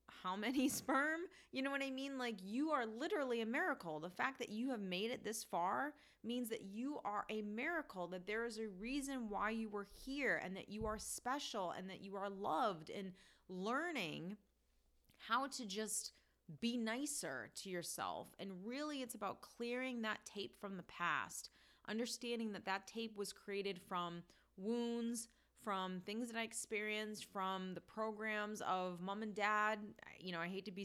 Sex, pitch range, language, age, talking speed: female, 190-235 Hz, English, 30-49, 180 wpm